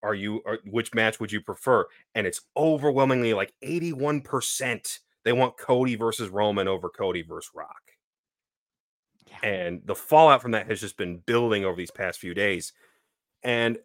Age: 30-49